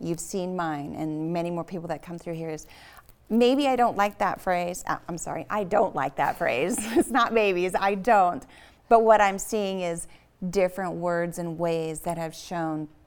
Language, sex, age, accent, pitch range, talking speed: English, female, 30-49, American, 170-215 Hz, 200 wpm